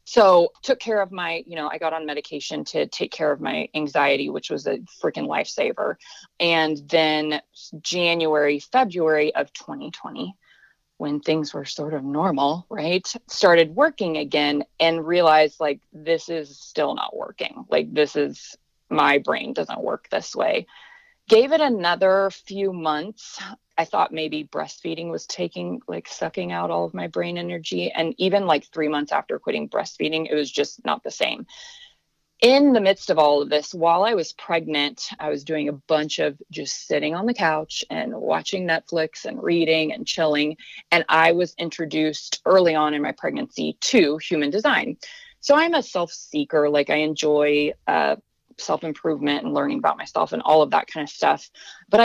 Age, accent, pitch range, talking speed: 30-49, American, 150-180 Hz, 175 wpm